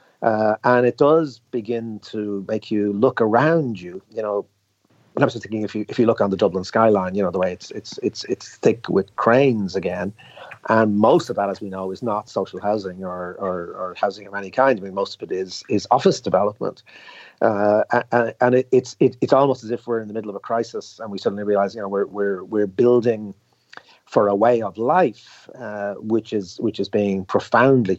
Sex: male